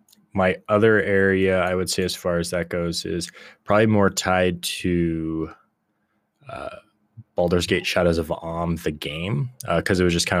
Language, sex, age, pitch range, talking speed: English, male, 20-39, 80-90 Hz, 175 wpm